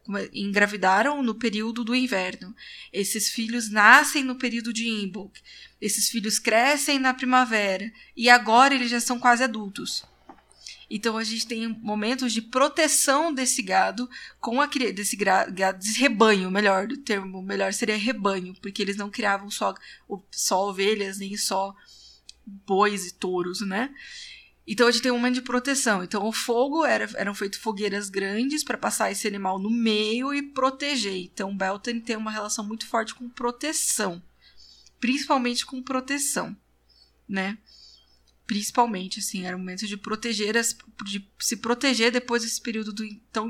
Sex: female